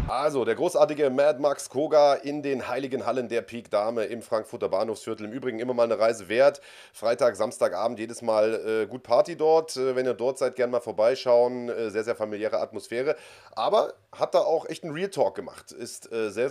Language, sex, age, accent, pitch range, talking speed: German, male, 30-49, German, 110-150 Hz, 200 wpm